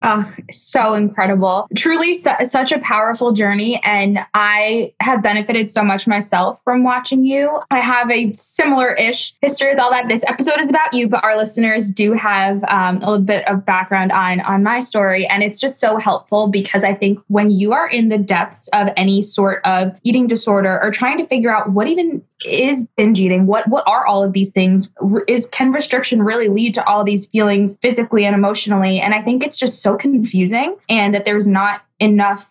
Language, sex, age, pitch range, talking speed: English, female, 20-39, 200-235 Hz, 200 wpm